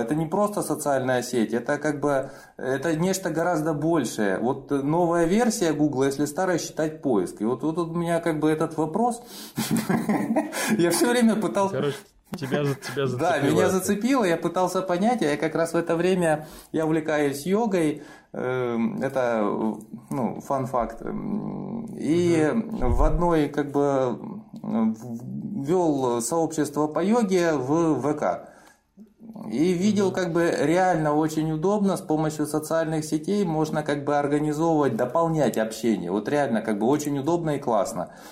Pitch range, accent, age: 145-180 Hz, native, 20-39